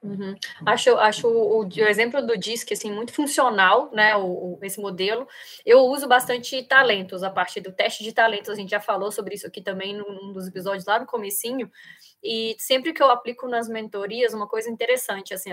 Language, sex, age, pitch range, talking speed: Portuguese, female, 20-39, 210-265 Hz, 205 wpm